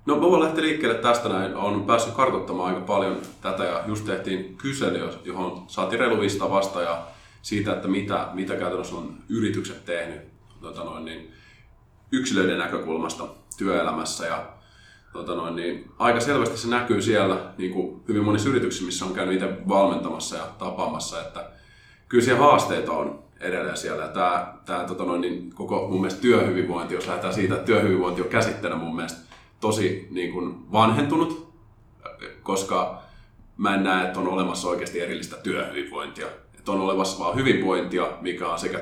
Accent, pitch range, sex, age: native, 90-110 Hz, male, 20-39